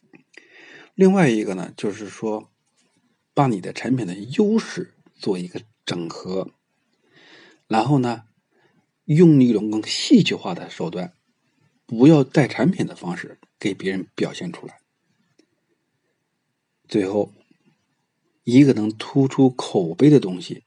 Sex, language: male, Chinese